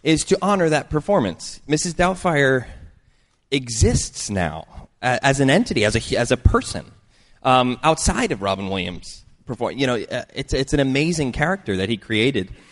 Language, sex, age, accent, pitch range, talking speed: English, male, 20-39, American, 105-145 Hz, 155 wpm